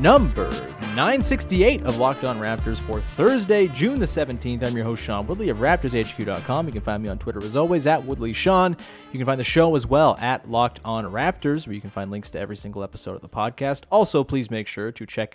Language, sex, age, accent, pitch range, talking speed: English, male, 30-49, American, 110-160 Hz, 225 wpm